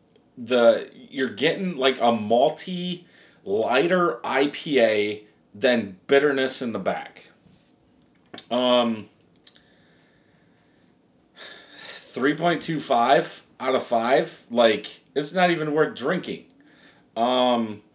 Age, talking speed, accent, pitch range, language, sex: 30-49, 85 wpm, American, 125-175 Hz, English, male